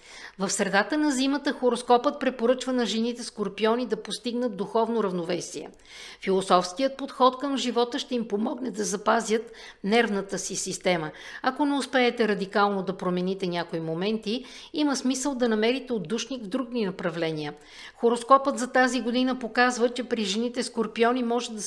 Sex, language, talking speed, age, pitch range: female, Bulgarian, 140 wpm, 50-69, 200-255 Hz